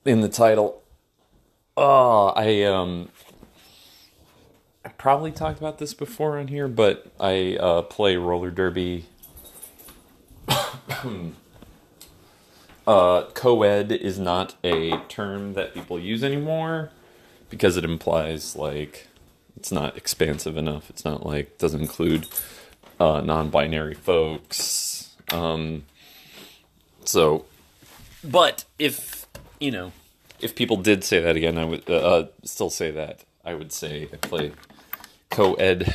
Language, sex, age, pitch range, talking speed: English, male, 30-49, 80-110 Hz, 120 wpm